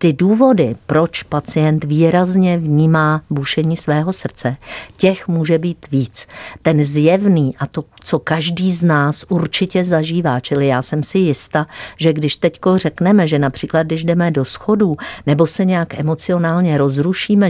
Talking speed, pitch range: 145 wpm, 135-170 Hz